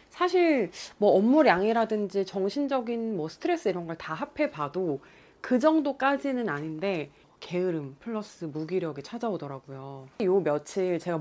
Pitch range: 160-235 Hz